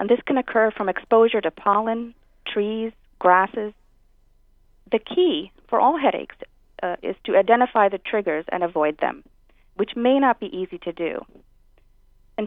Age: 40-59